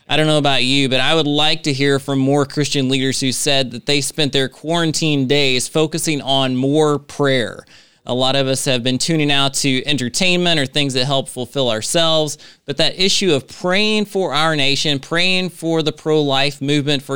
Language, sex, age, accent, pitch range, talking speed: English, male, 20-39, American, 125-155 Hz, 200 wpm